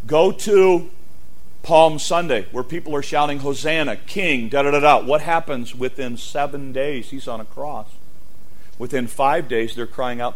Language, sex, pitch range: English, male, 120-180 Hz